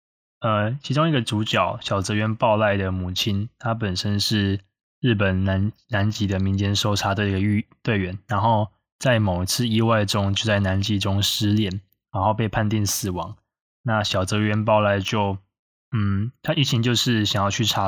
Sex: male